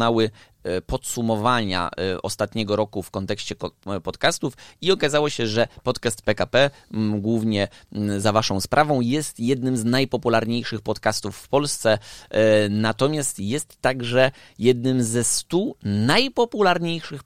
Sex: male